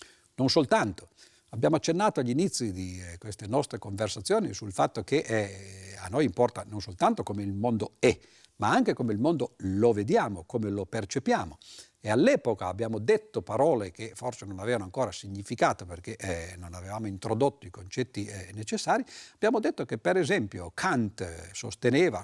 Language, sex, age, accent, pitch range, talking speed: Italian, male, 50-69, native, 100-140 Hz, 155 wpm